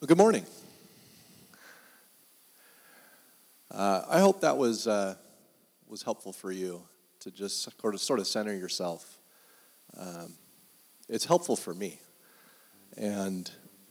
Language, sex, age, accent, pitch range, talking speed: English, male, 30-49, American, 105-130 Hz, 110 wpm